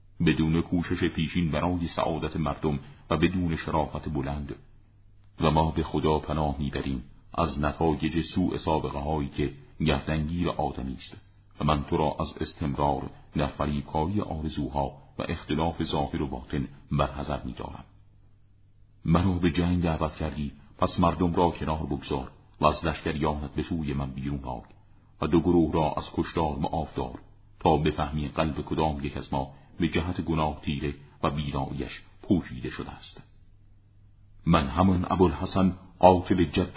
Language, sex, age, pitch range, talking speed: Persian, male, 50-69, 75-90 Hz, 140 wpm